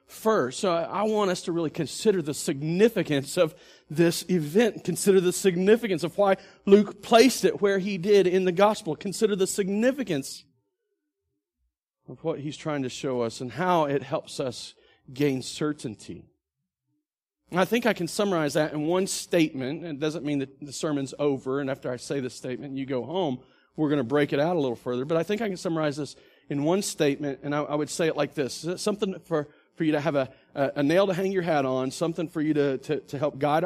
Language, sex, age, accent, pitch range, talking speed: English, male, 40-59, American, 140-190 Hz, 205 wpm